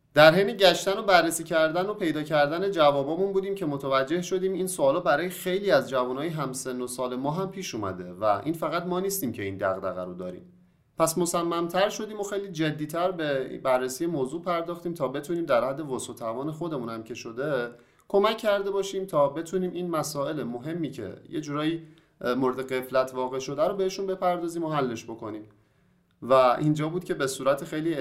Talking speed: 180 wpm